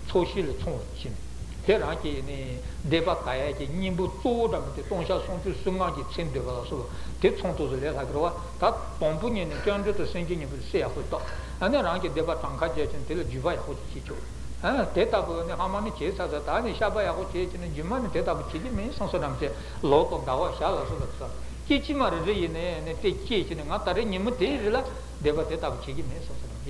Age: 60-79